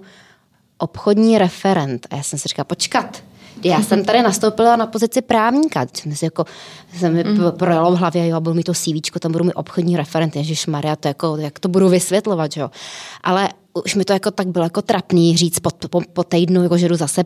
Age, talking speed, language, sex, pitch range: 20-39, 200 wpm, Czech, female, 170-195 Hz